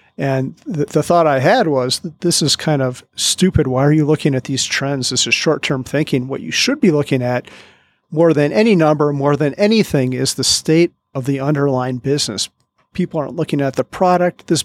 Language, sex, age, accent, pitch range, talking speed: English, male, 40-59, American, 130-165 Hz, 205 wpm